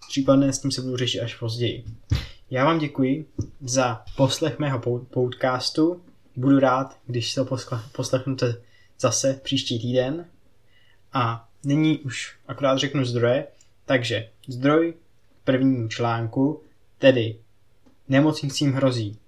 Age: 20-39